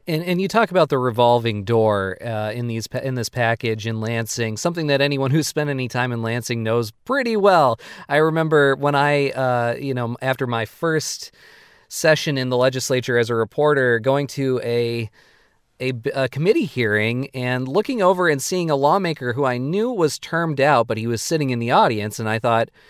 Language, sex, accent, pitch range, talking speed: English, male, American, 115-160 Hz, 195 wpm